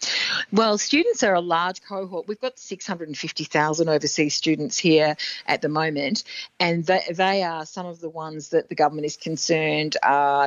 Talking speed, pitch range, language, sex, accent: 160 wpm, 155-190 Hz, English, female, Australian